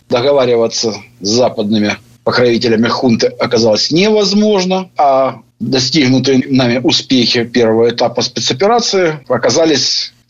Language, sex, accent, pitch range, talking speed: Russian, male, native, 120-170 Hz, 85 wpm